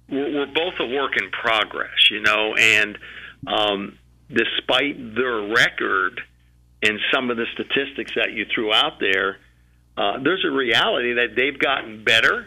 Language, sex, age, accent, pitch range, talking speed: English, male, 50-69, American, 105-125 Hz, 150 wpm